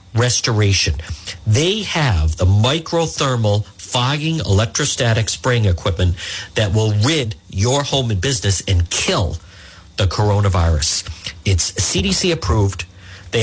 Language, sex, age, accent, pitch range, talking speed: English, male, 50-69, American, 90-130 Hz, 105 wpm